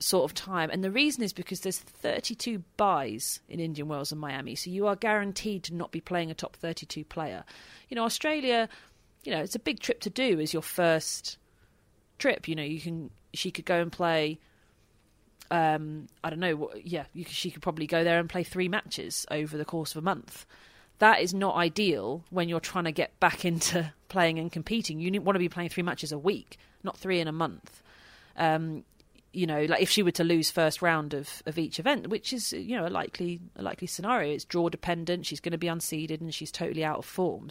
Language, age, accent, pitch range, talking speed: English, 30-49, British, 160-190 Hz, 225 wpm